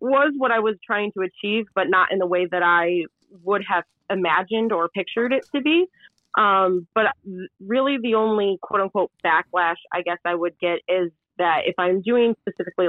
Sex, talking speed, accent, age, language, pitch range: female, 190 wpm, American, 30-49, English, 175-220 Hz